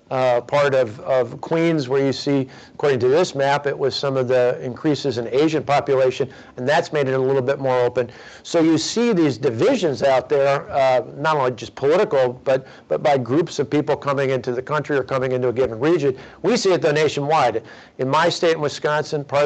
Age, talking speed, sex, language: 50-69, 215 wpm, male, English